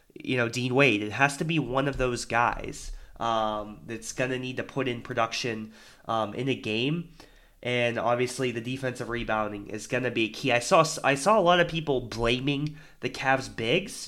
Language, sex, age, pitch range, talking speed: English, male, 20-39, 115-140 Hz, 190 wpm